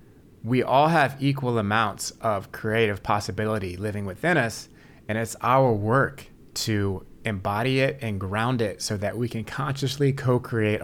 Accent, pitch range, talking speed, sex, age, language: American, 100-130 Hz, 150 wpm, male, 30-49, English